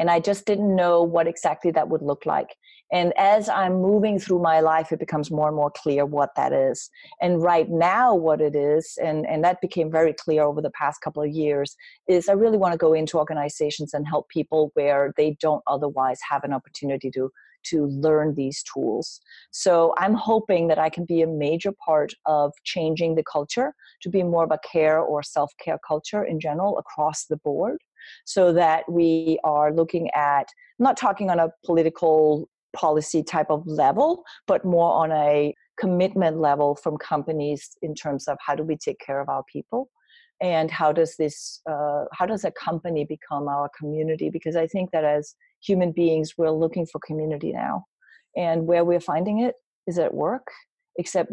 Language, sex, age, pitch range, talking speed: English, female, 40-59, 150-180 Hz, 190 wpm